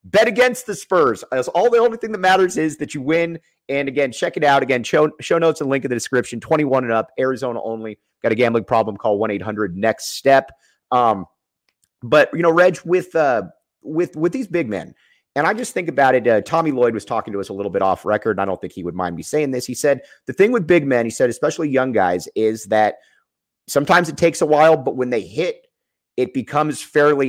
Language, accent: English, American